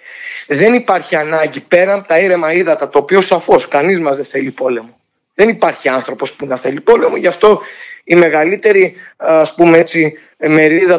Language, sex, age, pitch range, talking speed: Greek, male, 30-49, 150-215 Hz, 170 wpm